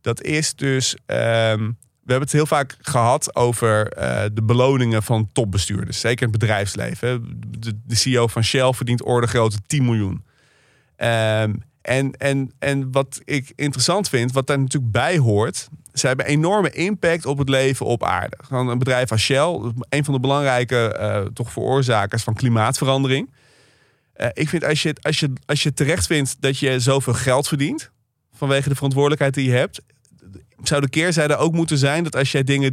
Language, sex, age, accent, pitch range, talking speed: Dutch, male, 30-49, Dutch, 120-140 Hz, 175 wpm